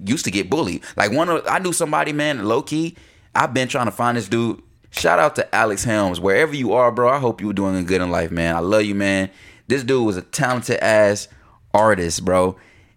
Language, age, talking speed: English, 20-39, 225 wpm